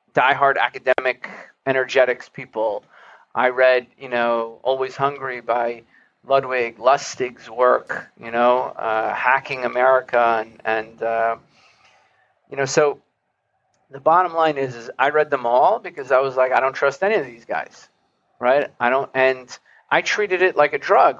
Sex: male